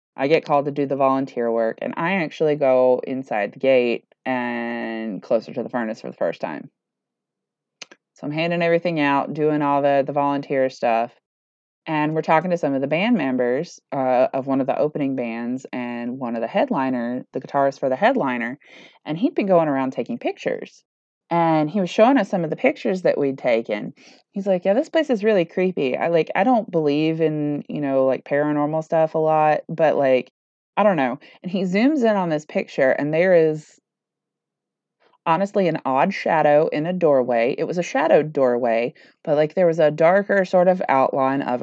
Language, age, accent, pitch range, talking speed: English, 20-39, American, 130-170 Hz, 200 wpm